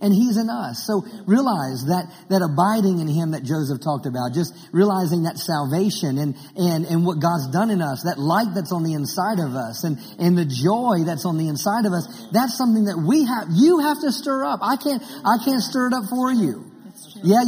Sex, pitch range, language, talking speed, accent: male, 170-240 Hz, English, 225 wpm, American